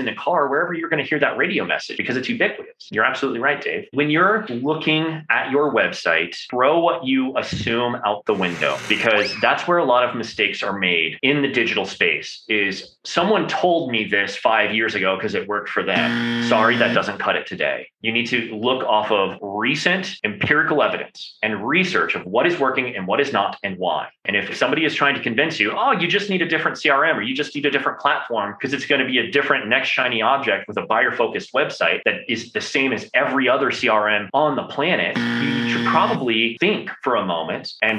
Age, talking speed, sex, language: 30-49, 220 wpm, male, English